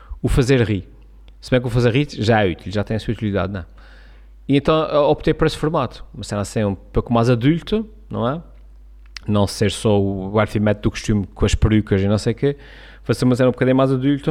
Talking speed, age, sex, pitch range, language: 235 wpm, 30-49, male, 105-135 Hz, Portuguese